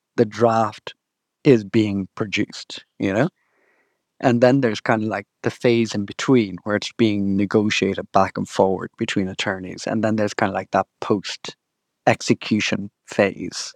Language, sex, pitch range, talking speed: English, male, 105-120 Hz, 155 wpm